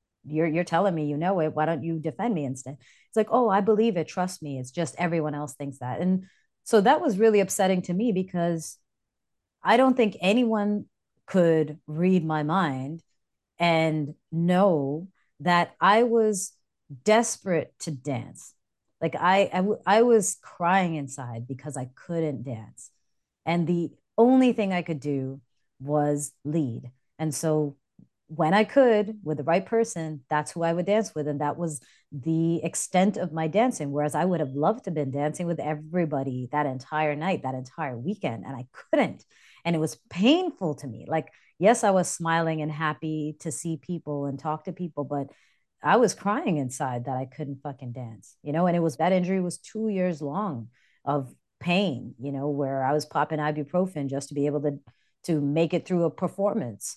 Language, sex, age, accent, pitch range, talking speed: English, female, 30-49, American, 145-185 Hz, 185 wpm